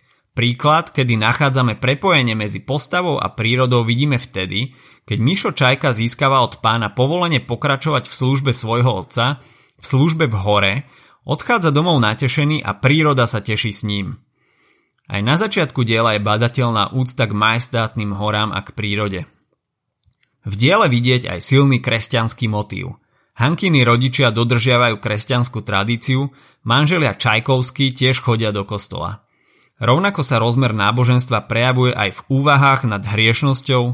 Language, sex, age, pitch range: Slovak, male, 30-49, 110-140 Hz